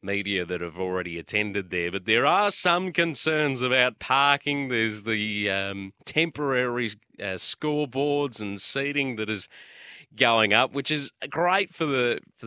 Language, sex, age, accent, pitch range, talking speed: English, male, 30-49, Australian, 100-140 Hz, 150 wpm